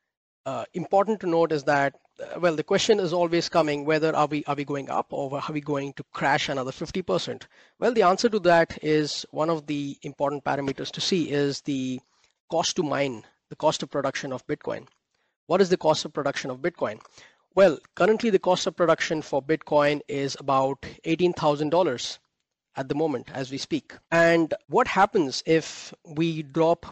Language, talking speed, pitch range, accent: English, 185 wpm, 140-165 Hz, Indian